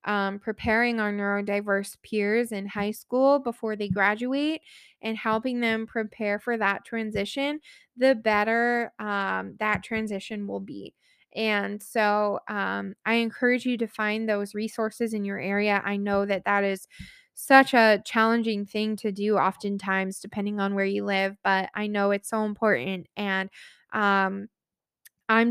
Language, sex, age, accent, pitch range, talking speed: English, female, 20-39, American, 200-230 Hz, 150 wpm